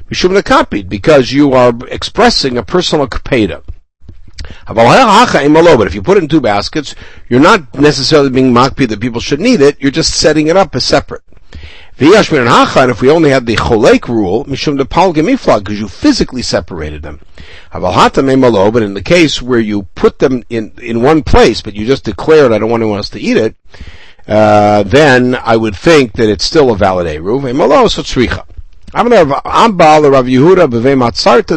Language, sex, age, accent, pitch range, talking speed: English, male, 60-79, American, 100-150 Hz, 165 wpm